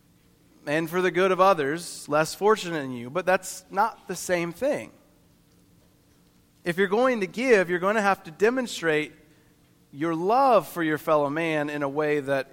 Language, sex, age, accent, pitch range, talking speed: English, male, 40-59, American, 140-190 Hz, 175 wpm